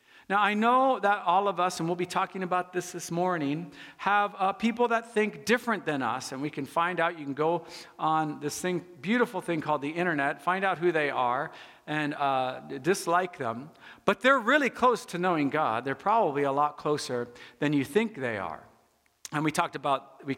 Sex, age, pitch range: male, 50-69, 150-205 Hz